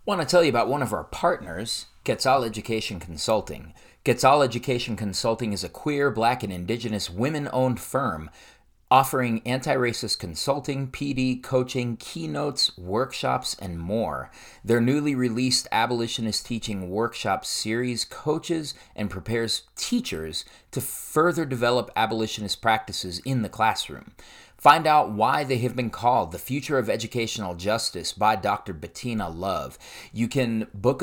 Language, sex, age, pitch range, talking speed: English, male, 30-49, 95-130 Hz, 135 wpm